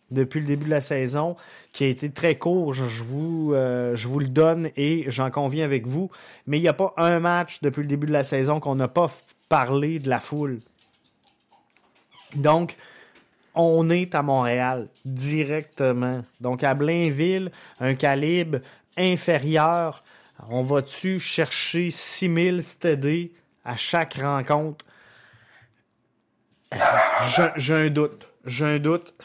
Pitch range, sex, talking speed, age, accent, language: 145-180 Hz, male, 145 wpm, 20-39, Canadian, French